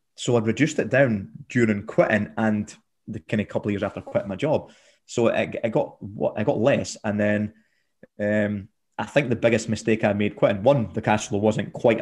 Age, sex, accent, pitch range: 20-39, male, British, 105-125 Hz